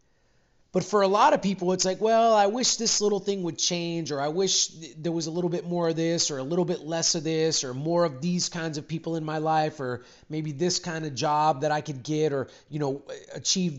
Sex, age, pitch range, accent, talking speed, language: male, 30-49, 145-175 Hz, American, 255 wpm, English